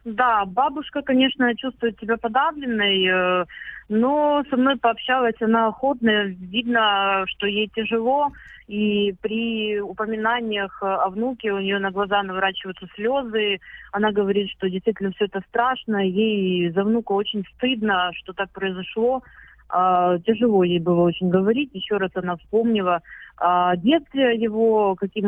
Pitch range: 190-235 Hz